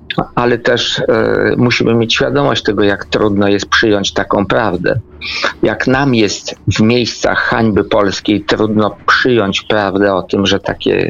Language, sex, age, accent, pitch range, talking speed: Polish, male, 50-69, native, 100-130 Hz, 145 wpm